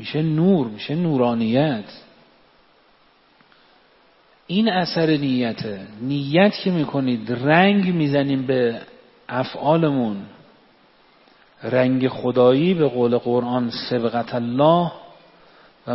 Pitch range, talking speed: 125-170 Hz, 85 wpm